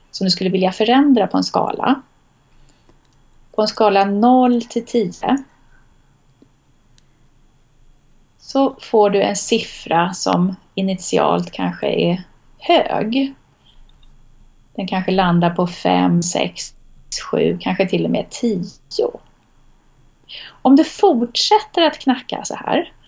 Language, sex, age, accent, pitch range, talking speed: Swedish, female, 30-49, native, 195-270 Hz, 105 wpm